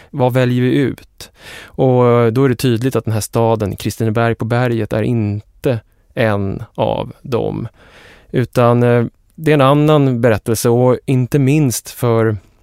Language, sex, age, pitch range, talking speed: English, male, 20-39, 100-115 Hz, 145 wpm